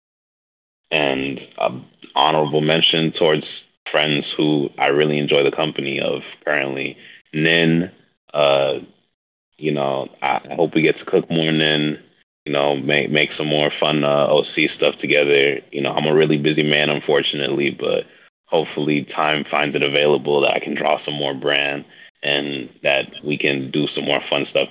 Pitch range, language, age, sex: 70-80 Hz, English, 20-39, male